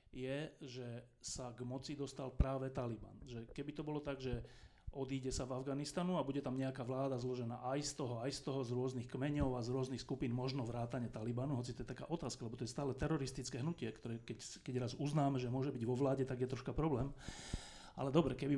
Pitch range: 125-140 Hz